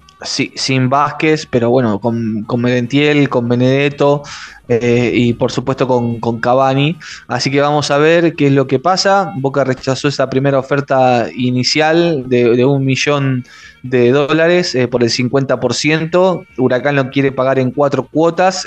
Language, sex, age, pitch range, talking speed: Spanish, male, 20-39, 125-150 Hz, 155 wpm